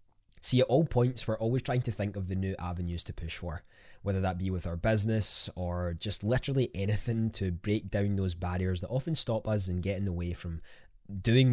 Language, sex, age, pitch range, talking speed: English, male, 20-39, 95-110 Hz, 220 wpm